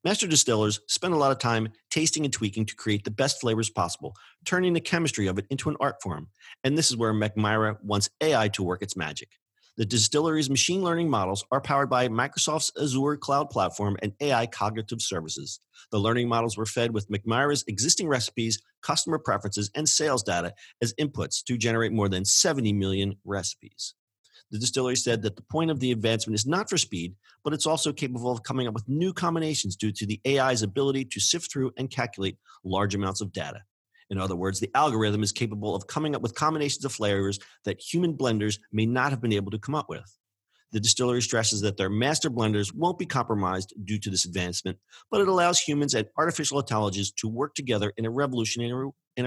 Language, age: English, 40-59